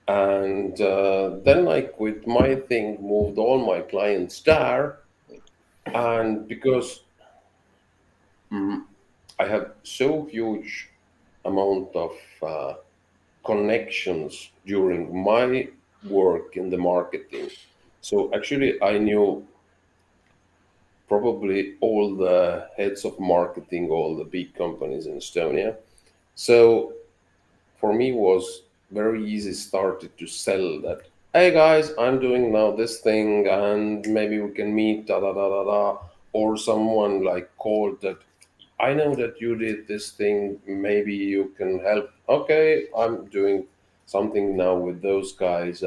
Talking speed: 125 wpm